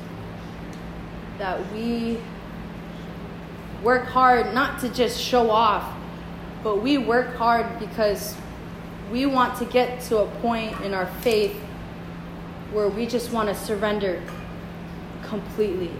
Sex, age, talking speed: female, 20-39, 115 wpm